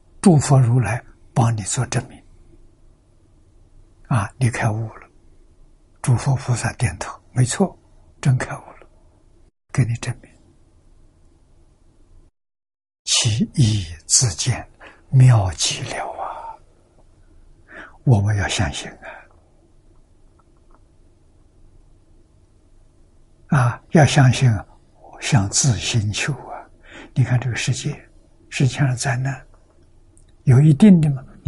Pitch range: 85-135 Hz